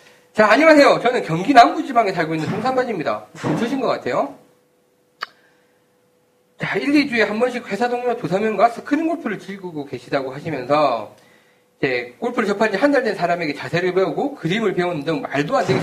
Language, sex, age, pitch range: Korean, male, 40-59, 160-240 Hz